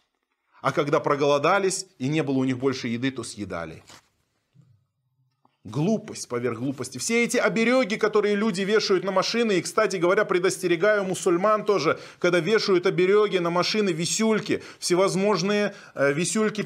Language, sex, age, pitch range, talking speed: Russian, male, 20-39, 140-205 Hz, 135 wpm